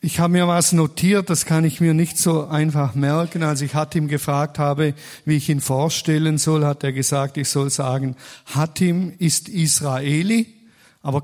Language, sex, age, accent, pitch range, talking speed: German, male, 50-69, German, 135-160 Hz, 175 wpm